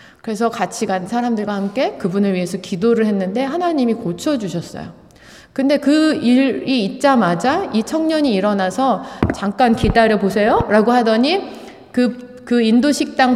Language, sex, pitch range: Korean, female, 195-270 Hz